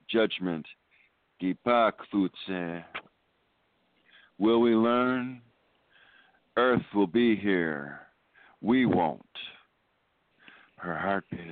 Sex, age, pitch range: male, 50-69, 90-115 Hz